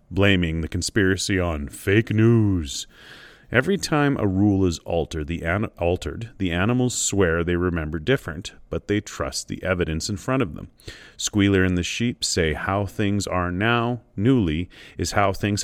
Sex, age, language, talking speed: male, 30-49, English, 165 wpm